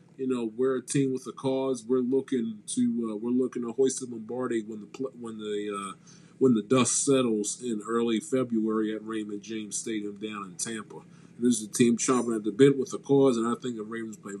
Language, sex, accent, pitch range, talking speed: English, male, American, 120-160 Hz, 230 wpm